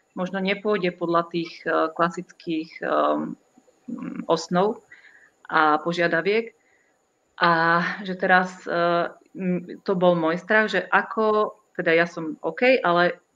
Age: 30-49